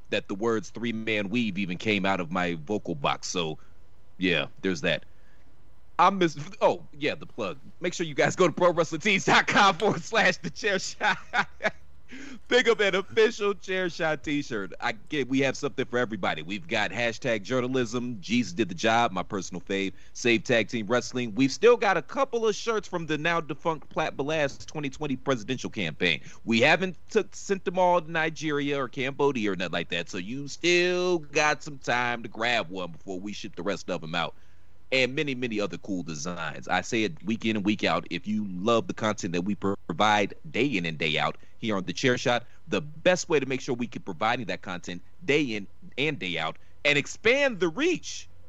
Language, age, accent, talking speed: English, 30-49, American, 200 wpm